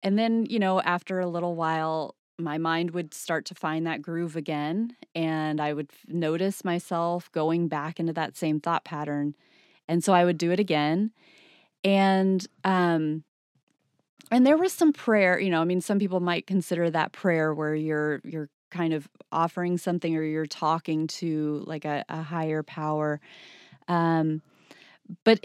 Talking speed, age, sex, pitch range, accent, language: 170 wpm, 20-39, female, 155-185 Hz, American, English